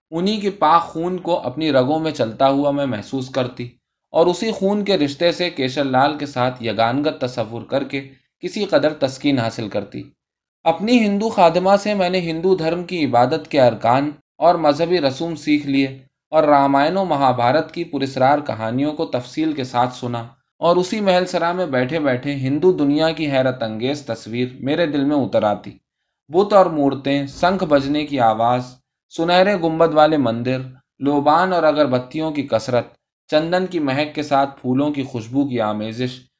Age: 20-39